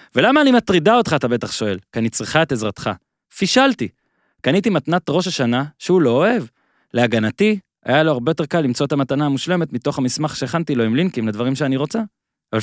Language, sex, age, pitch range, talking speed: Hebrew, male, 20-39, 125-190 Hz, 190 wpm